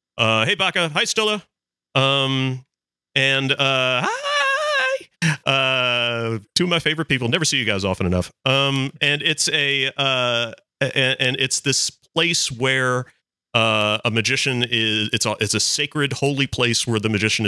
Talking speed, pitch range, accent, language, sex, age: 160 wpm, 95-130 Hz, American, English, male, 40-59